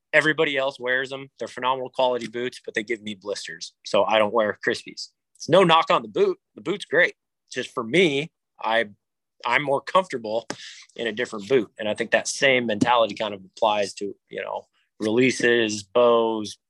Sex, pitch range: male, 105-140 Hz